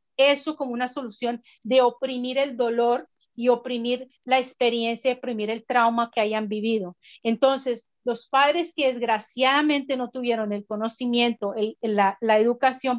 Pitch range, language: 235-280 Hz, Spanish